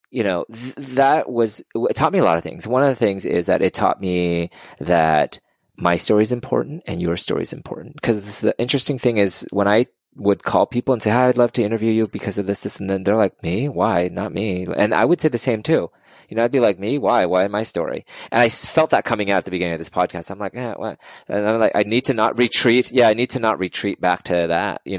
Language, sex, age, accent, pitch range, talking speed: English, male, 20-39, American, 95-125 Hz, 265 wpm